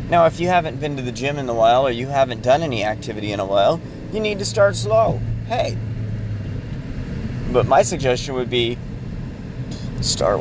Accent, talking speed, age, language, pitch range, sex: American, 185 wpm, 30-49, English, 115-140 Hz, male